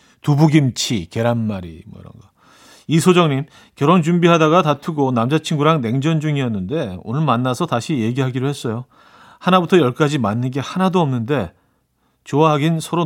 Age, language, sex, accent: 40-59, Korean, male, native